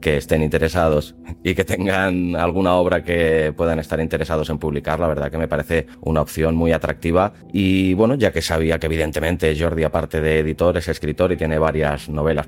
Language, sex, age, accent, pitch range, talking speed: Spanish, male, 30-49, Spanish, 75-95 Hz, 190 wpm